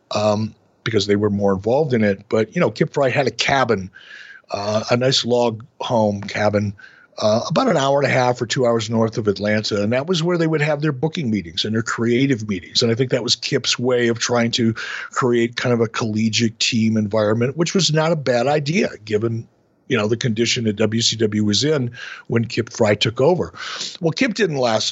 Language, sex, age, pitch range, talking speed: English, male, 50-69, 115-155 Hz, 215 wpm